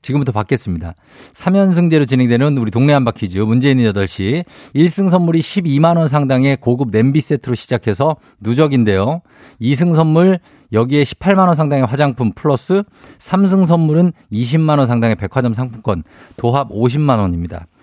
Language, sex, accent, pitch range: Korean, male, native, 110-155 Hz